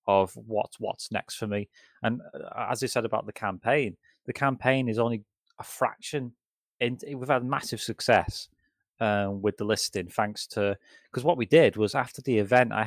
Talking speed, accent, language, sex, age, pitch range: 175 wpm, British, English, male, 20-39, 105-125 Hz